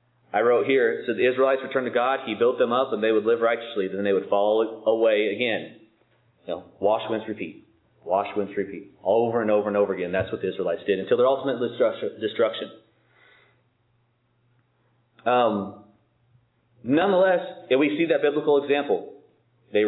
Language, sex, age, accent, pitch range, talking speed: English, male, 30-49, American, 105-130 Hz, 170 wpm